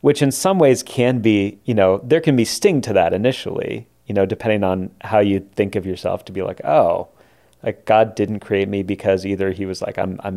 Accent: American